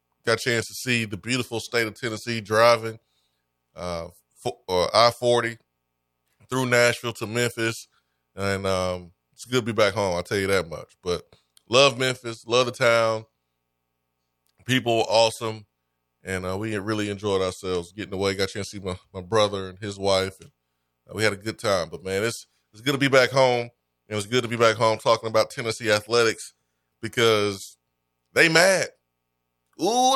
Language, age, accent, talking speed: English, 20-39, American, 180 wpm